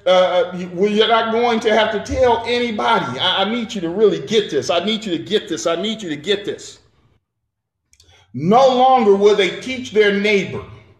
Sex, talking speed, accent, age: male, 195 wpm, American, 40-59